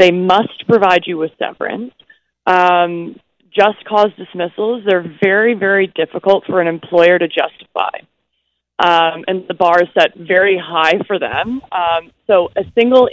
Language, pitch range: English, 170-210 Hz